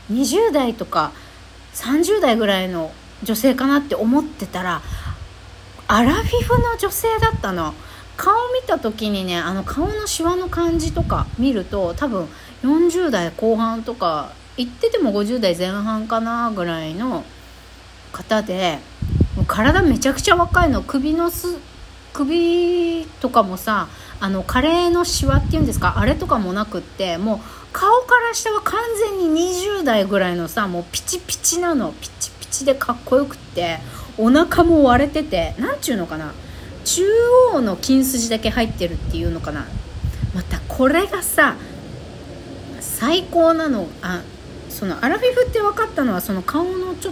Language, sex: Japanese, female